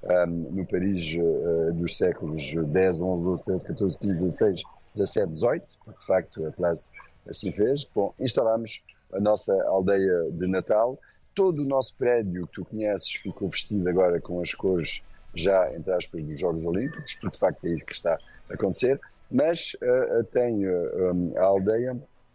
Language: Portuguese